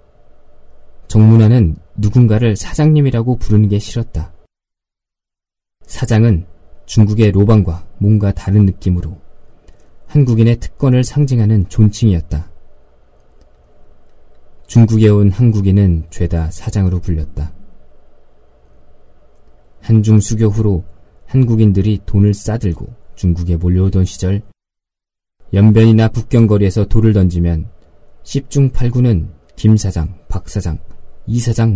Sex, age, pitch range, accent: male, 20-39, 85-110 Hz, native